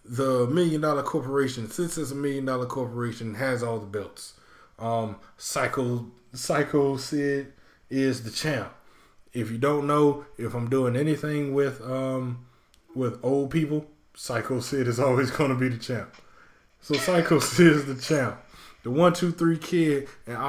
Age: 20-39